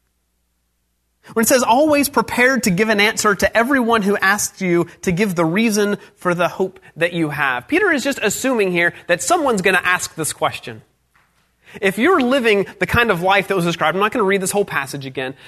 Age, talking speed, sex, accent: 30-49, 215 wpm, male, American